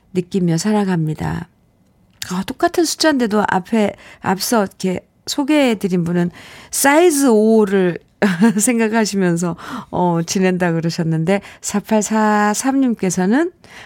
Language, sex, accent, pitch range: Korean, female, native, 185-265 Hz